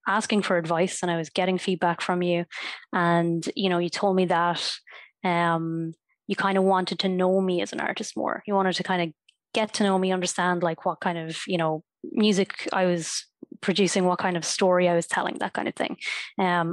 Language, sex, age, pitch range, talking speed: English, female, 20-39, 170-190 Hz, 220 wpm